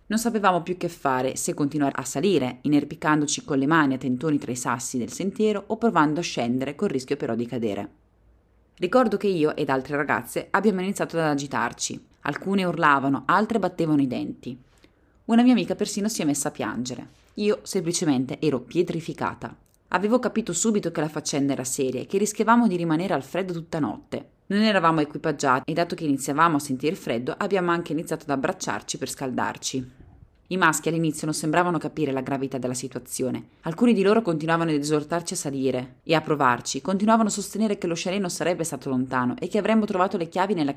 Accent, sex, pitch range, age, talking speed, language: native, female, 135-195 Hz, 20-39, 190 wpm, Italian